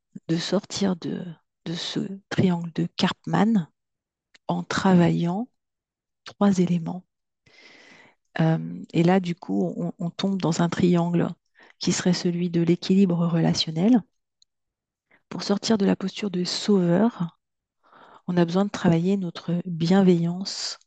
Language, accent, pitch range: French, French, 170-195 Hz